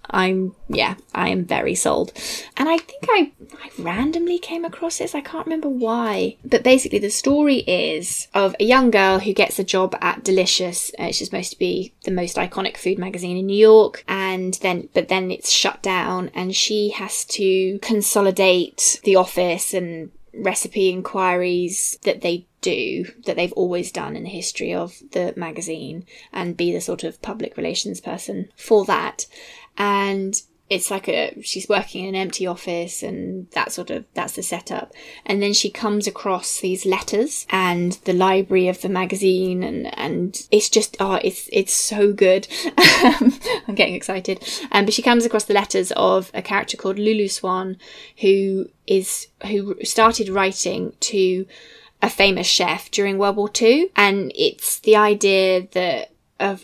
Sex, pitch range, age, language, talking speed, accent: female, 185-220 Hz, 20-39, English, 170 wpm, British